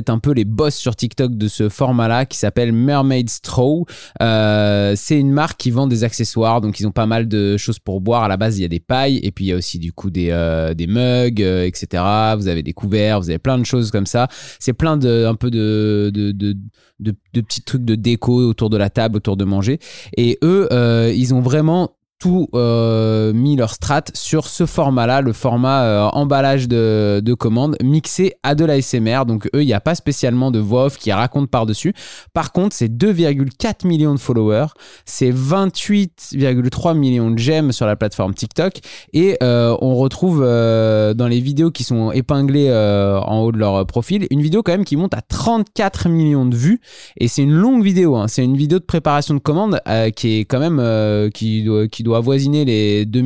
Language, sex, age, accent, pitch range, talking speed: French, male, 20-39, French, 110-145 Hz, 215 wpm